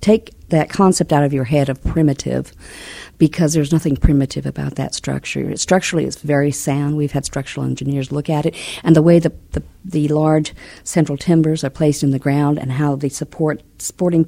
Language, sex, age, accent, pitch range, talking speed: English, female, 50-69, American, 140-165 Hz, 195 wpm